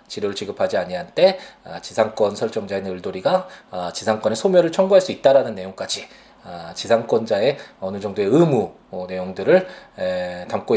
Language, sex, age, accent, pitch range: Korean, male, 20-39, native, 95-140 Hz